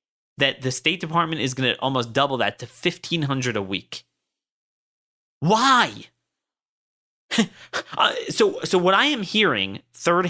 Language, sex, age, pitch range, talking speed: English, male, 30-49, 135-220 Hz, 130 wpm